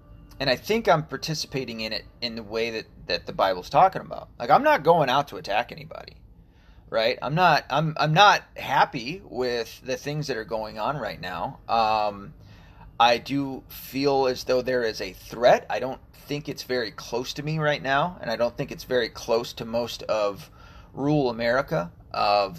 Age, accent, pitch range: 30-49, American, 110-145 Hz